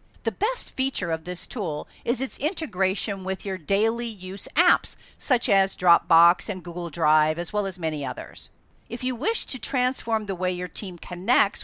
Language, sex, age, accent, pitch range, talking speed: English, female, 50-69, American, 185-235 Hz, 180 wpm